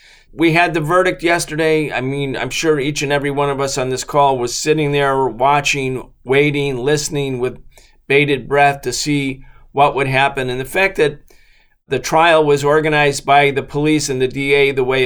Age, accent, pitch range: 40-59, American, 130-155 Hz